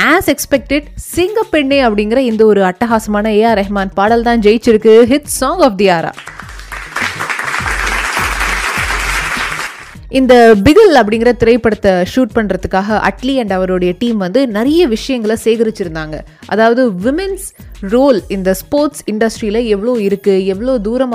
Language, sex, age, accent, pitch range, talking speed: Tamil, female, 20-39, native, 195-265 Hz, 70 wpm